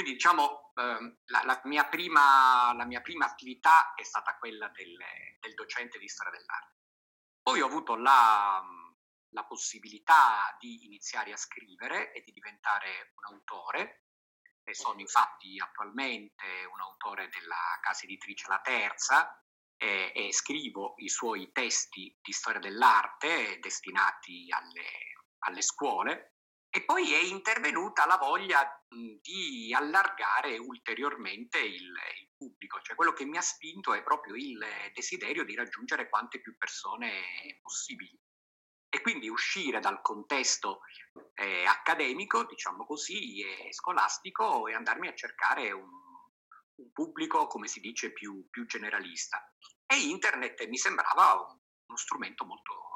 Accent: native